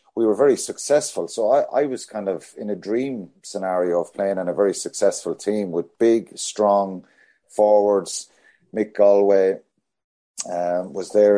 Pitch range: 95-115 Hz